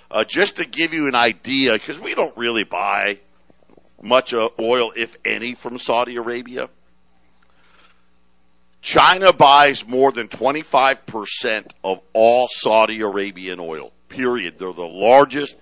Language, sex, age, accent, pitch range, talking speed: English, male, 50-69, American, 100-135 Hz, 125 wpm